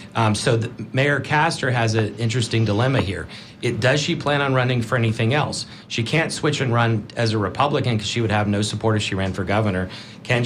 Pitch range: 110-135 Hz